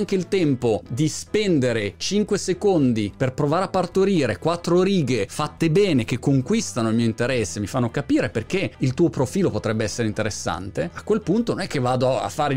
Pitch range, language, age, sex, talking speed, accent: 115-175 Hz, Italian, 30-49, male, 185 wpm, native